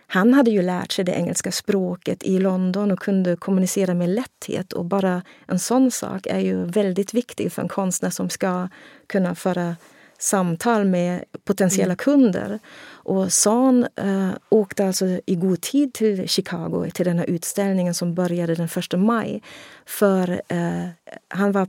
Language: Swedish